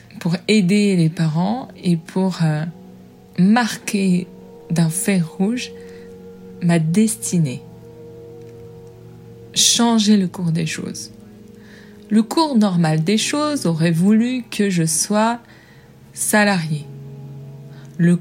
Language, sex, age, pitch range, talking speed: French, female, 20-39, 155-205 Hz, 100 wpm